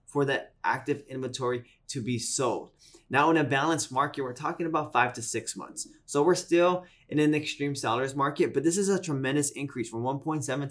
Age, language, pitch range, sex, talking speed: 20-39, English, 125-160 Hz, male, 195 wpm